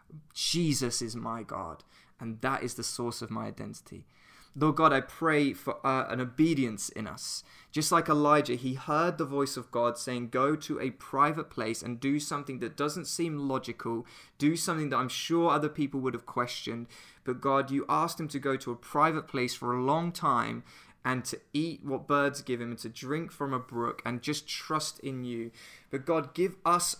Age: 20-39